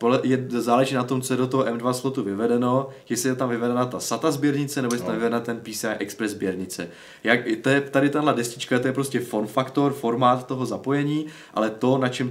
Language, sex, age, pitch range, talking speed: Czech, male, 20-39, 105-130 Hz, 200 wpm